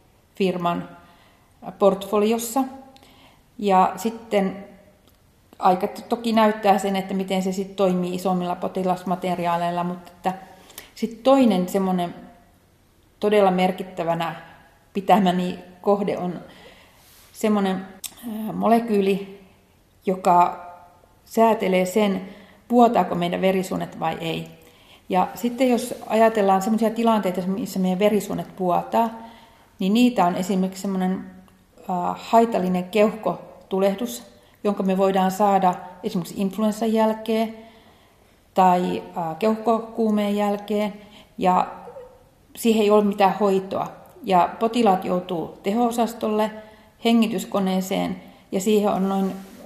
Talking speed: 90 wpm